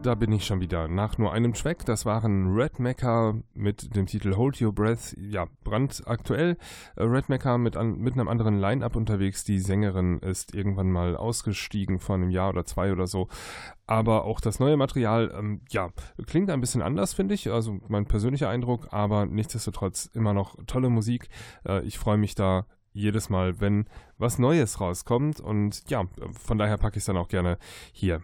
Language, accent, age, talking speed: German, German, 10-29, 185 wpm